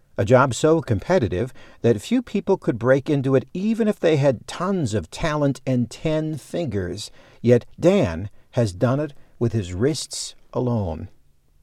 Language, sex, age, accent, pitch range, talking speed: English, male, 50-69, American, 100-140 Hz, 155 wpm